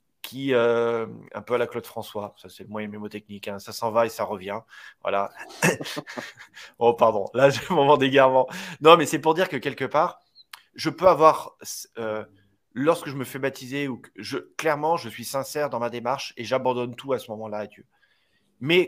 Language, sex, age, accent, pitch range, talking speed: French, male, 30-49, French, 115-150 Hz, 195 wpm